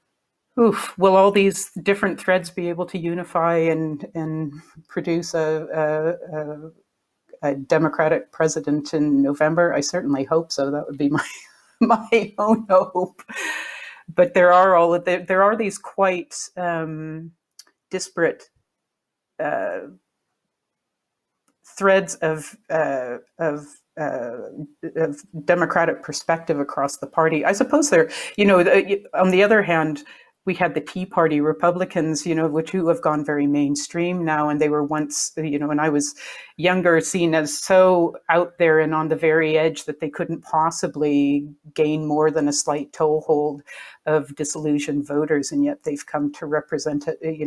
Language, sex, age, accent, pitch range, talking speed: English, female, 40-59, American, 150-180 Hz, 150 wpm